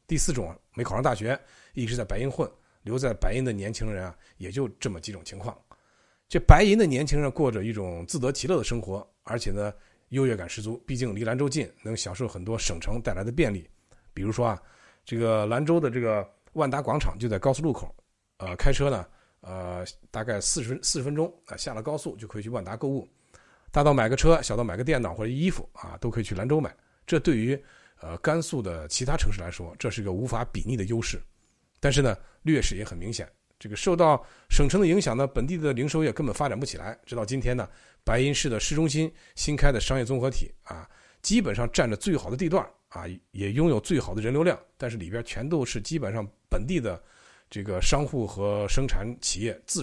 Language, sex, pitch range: Chinese, male, 105-140 Hz